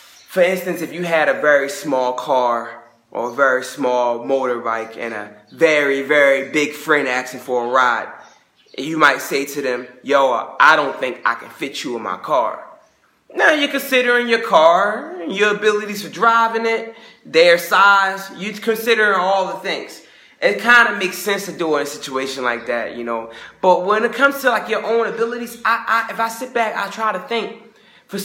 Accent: American